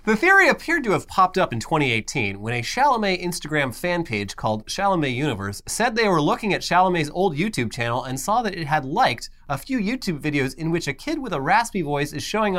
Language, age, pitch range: English, 30-49, 120-190 Hz